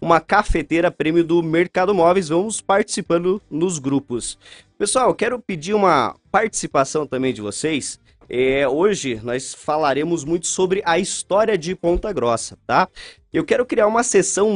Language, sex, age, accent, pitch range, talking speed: Portuguese, male, 20-39, Brazilian, 140-190 Hz, 140 wpm